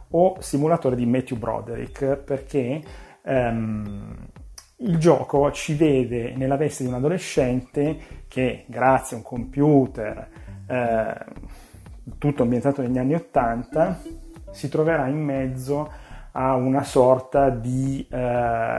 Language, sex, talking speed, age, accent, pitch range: Italian, male, 115 wpm, 30-49, native, 120-140 Hz